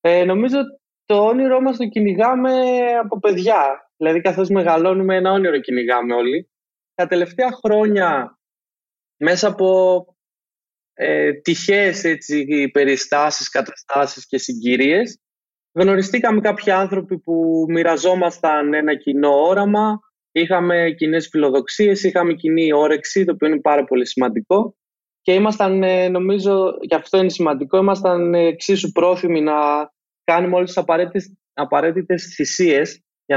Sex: male